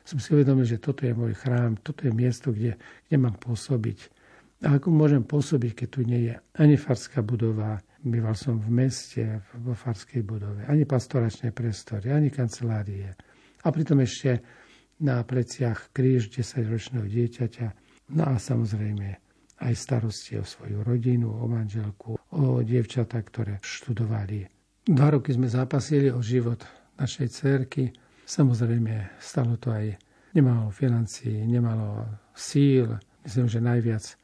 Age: 50-69